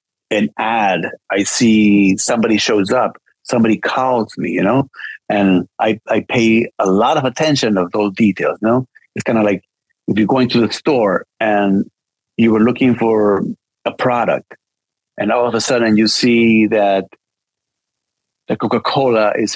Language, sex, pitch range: English, male, 105-125 Hz